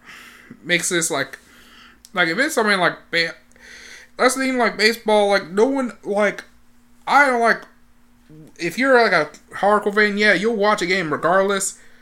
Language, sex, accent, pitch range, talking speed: English, male, American, 165-230 Hz, 160 wpm